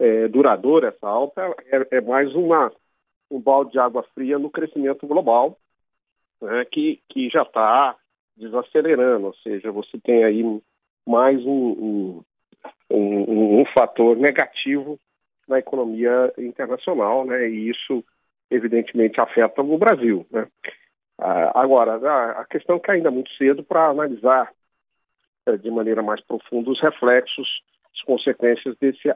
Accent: Brazilian